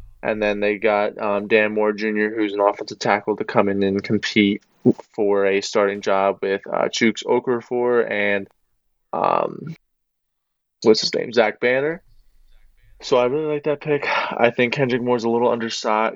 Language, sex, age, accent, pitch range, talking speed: English, male, 20-39, American, 100-115 Hz, 165 wpm